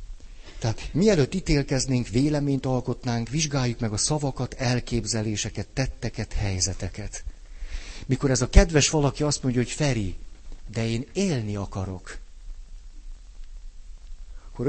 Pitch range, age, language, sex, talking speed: 95-135 Hz, 60-79, Hungarian, male, 105 wpm